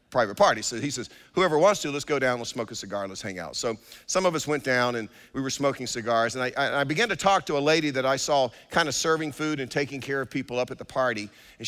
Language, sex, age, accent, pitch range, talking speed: English, male, 50-69, American, 110-135 Hz, 285 wpm